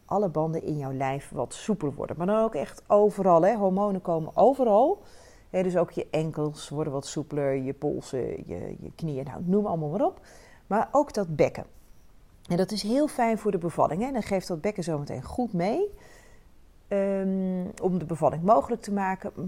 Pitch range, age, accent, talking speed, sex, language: 155-210 Hz, 40-59, Dutch, 185 wpm, female, Dutch